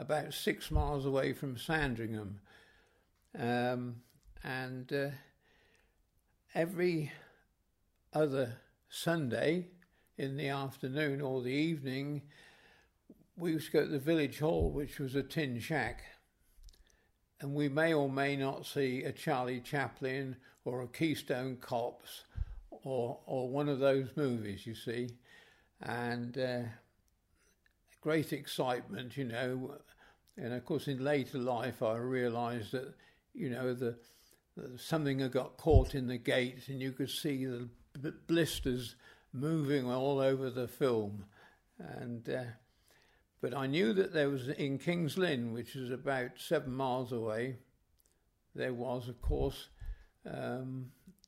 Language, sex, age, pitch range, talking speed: English, male, 60-79, 125-150 Hz, 130 wpm